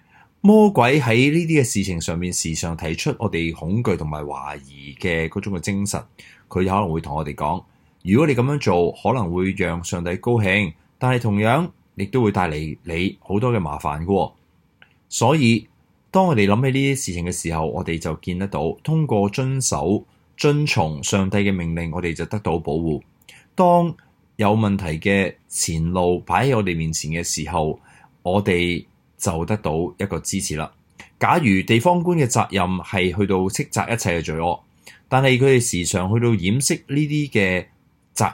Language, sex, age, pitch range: Chinese, male, 20-39, 85-120 Hz